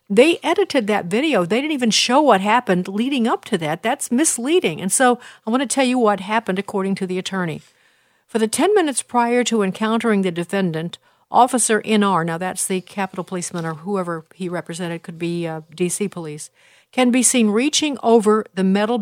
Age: 50-69